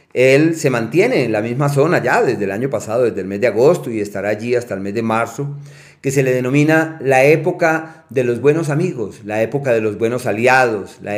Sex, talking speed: male, 225 wpm